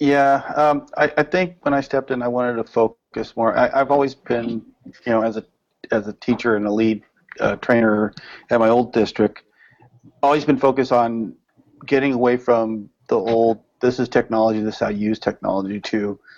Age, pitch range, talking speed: 40-59, 110-130 Hz, 195 wpm